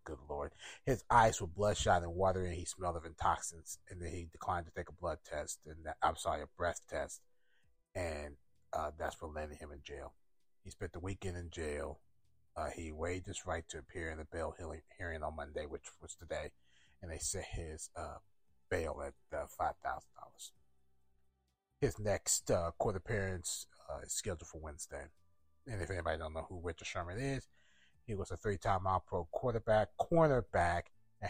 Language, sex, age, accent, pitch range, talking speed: English, male, 30-49, American, 80-95 Hz, 180 wpm